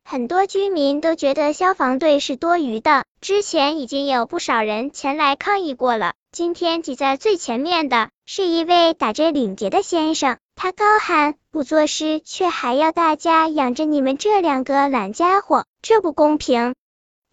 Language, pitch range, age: Chinese, 275-355 Hz, 10-29